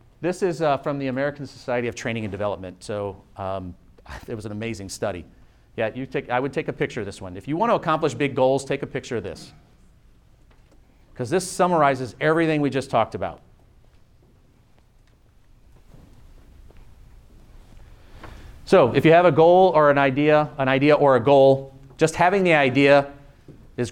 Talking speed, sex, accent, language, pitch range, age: 170 wpm, male, American, English, 115-150 Hz, 40-59